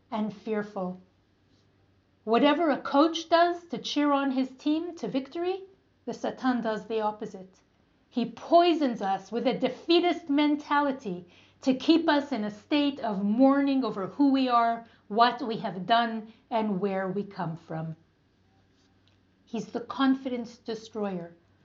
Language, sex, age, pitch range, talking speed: English, female, 40-59, 210-300 Hz, 140 wpm